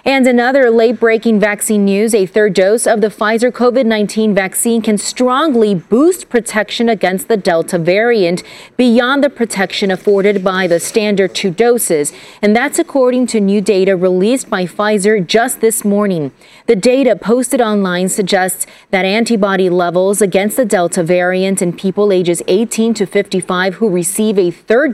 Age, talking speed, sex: 30-49, 160 wpm, female